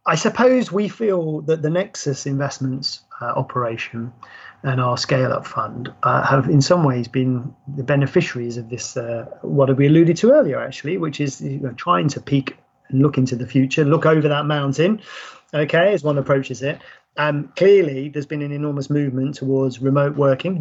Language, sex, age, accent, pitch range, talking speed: English, male, 30-49, British, 135-155 Hz, 185 wpm